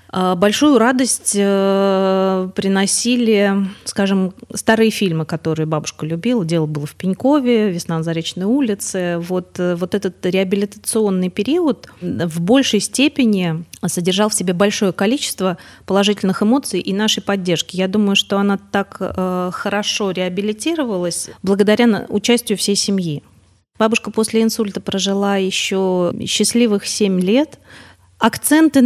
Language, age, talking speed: Russian, 30-49, 115 wpm